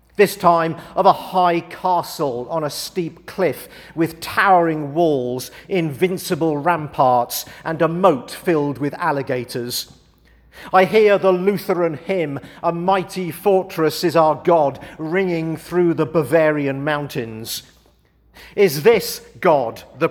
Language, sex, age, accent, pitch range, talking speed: English, male, 50-69, British, 150-185 Hz, 120 wpm